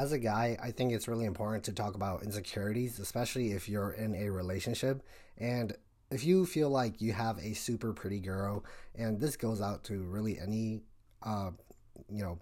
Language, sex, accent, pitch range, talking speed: English, male, American, 95-115 Hz, 190 wpm